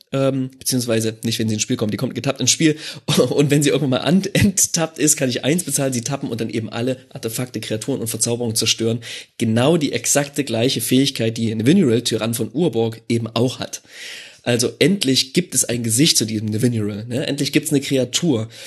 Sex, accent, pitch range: male, German, 115-150 Hz